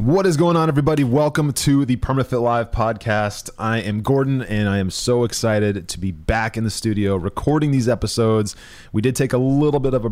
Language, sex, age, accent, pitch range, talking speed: English, male, 20-39, American, 90-115 Hz, 215 wpm